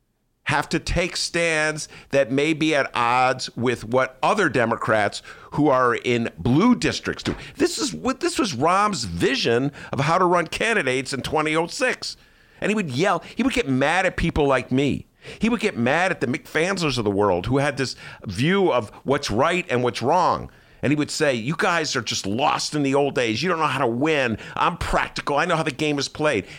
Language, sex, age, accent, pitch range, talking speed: English, male, 50-69, American, 120-170 Hz, 210 wpm